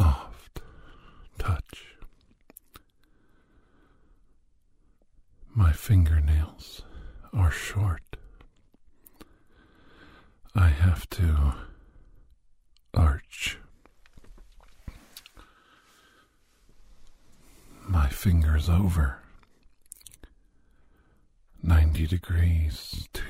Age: 50-69